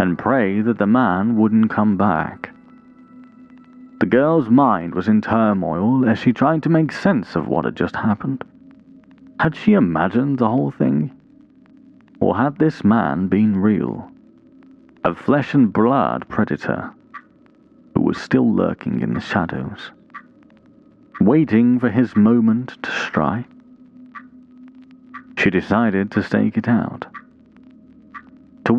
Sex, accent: male, British